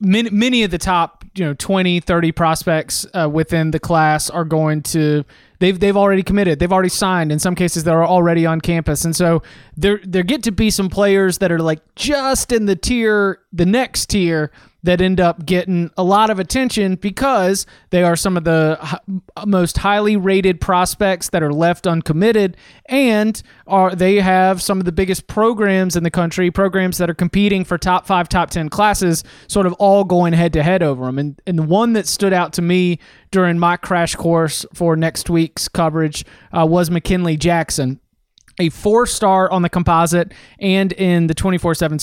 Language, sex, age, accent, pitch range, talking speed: English, male, 20-39, American, 165-195 Hz, 185 wpm